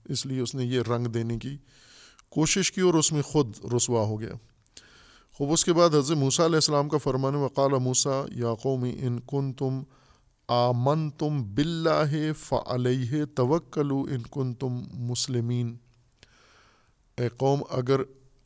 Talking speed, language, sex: 145 wpm, Urdu, male